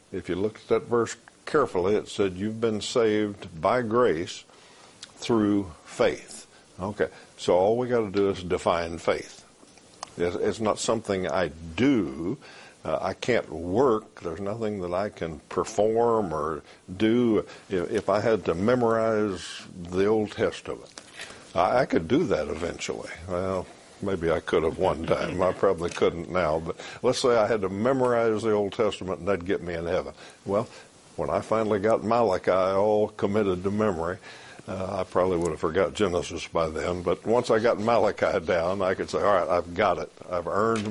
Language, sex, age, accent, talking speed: English, male, 60-79, American, 175 wpm